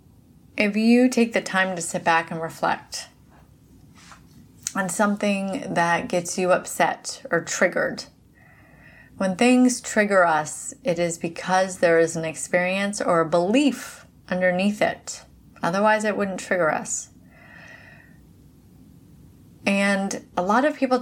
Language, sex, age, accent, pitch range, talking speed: English, female, 30-49, American, 180-230 Hz, 125 wpm